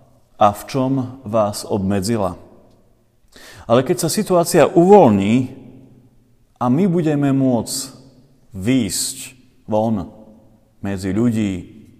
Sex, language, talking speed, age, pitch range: male, Slovak, 90 wpm, 40-59, 105-130 Hz